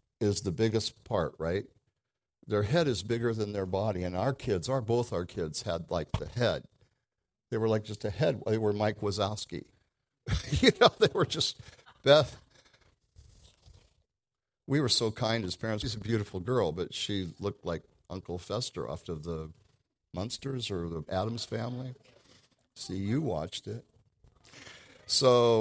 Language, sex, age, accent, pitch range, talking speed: English, male, 60-79, American, 105-130 Hz, 160 wpm